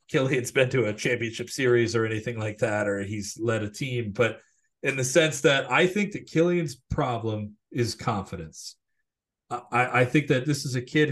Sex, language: male, English